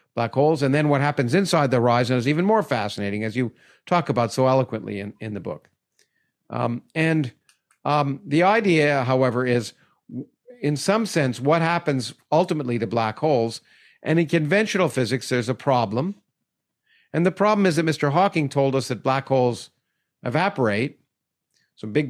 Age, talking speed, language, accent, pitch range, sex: 50-69, 170 wpm, English, American, 125-165 Hz, male